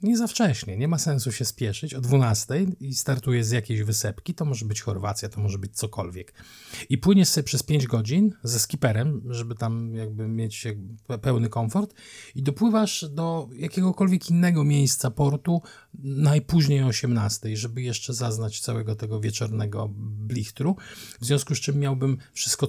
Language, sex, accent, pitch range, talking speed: Polish, male, native, 110-130 Hz, 160 wpm